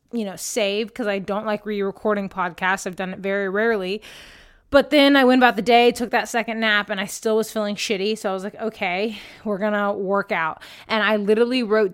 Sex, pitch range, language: female, 195-235 Hz, English